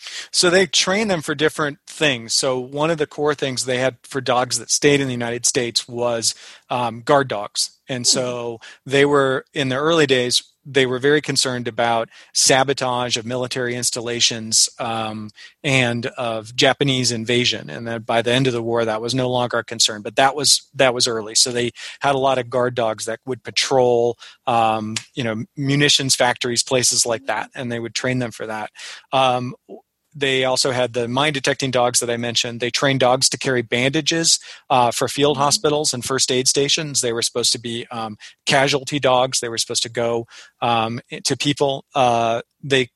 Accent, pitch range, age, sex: American, 120-140 Hz, 30-49, male